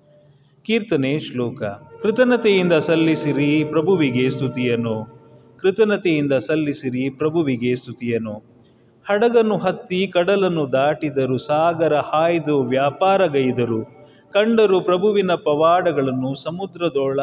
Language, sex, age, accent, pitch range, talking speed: Kannada, male, 30-49, native, 125-175 Hz, 75 wpm